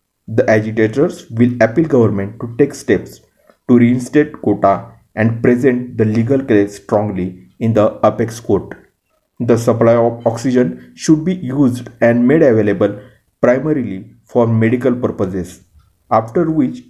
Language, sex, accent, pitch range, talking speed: Marathi, male, native, 105-125 Hz, 130 wpm